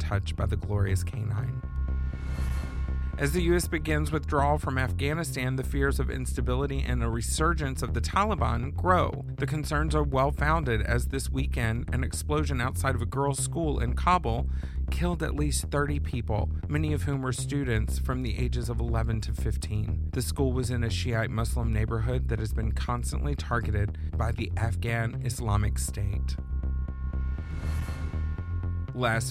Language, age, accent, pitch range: English, 40-59, American, 65-95 Hz